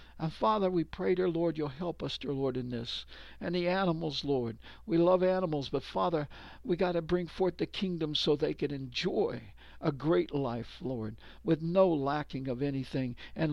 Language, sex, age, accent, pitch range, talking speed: English, male, 60-79, American, 130-170 Hz, 190 wpm